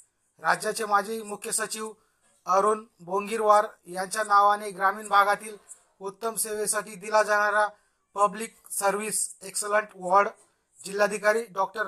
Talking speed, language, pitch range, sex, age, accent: 100 wpm, Marathi, 195-215 Hz, male, 40-59, native